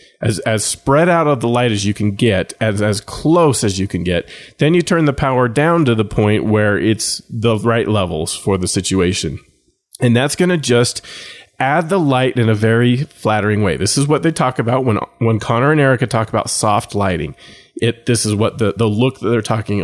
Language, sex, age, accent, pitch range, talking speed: English, male, 30-49, American, 105-130 Hz, 220 wpm